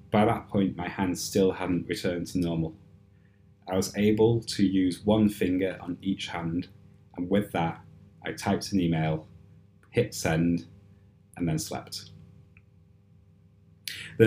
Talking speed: 140 wpm